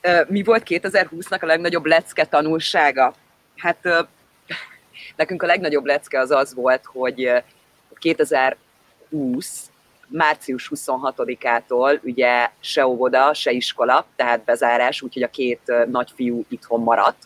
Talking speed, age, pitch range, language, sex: 115 wpm, 30-49, 125-155 Hz, Hungarian, female